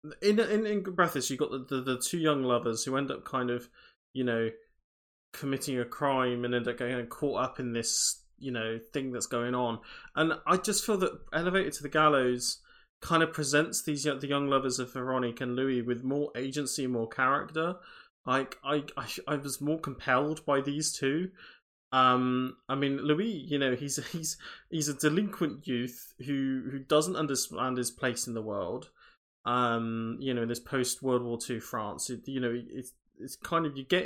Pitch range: 125-150 Hz